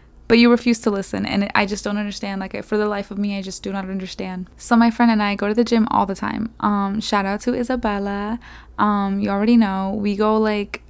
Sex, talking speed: female, 250 wpm